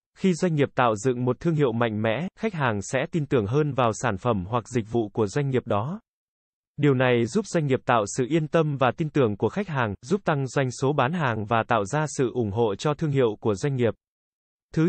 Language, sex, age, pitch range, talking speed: Vietnamese, male, 20-39, 120-155 Hz, 240 wpm